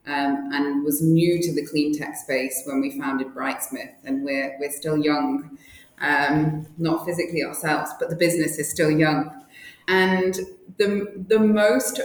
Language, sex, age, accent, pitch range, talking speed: English, female, 20-39, British, 145-165 Hz, 160 wpm